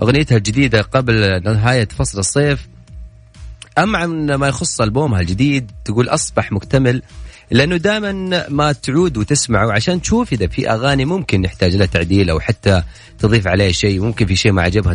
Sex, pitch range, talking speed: male, 95-135 Hz, 155 wpm